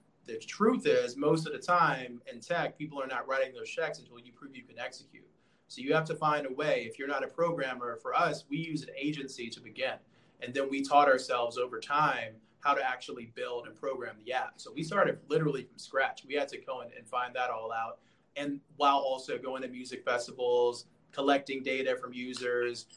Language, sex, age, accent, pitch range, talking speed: English, male, 20-39, American, 125-155 Hz, 215 wpm